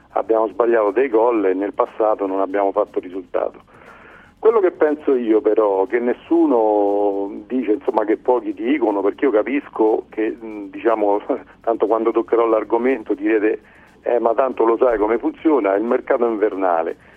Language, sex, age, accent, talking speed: Italian, male, 40-59, native, 155 wpm